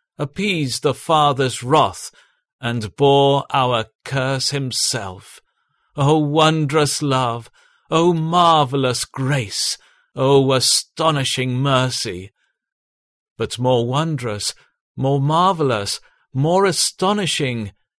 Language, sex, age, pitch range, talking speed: English, male, 50-69, 125-155 Hz, 85 wpm